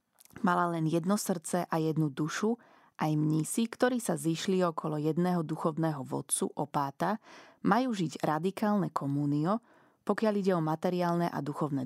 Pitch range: 155-190 Hz